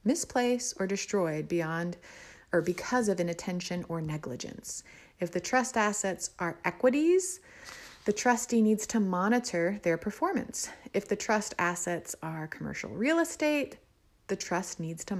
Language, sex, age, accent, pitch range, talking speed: English, female, 30-49, American, 170-225 Hz, 140 wpm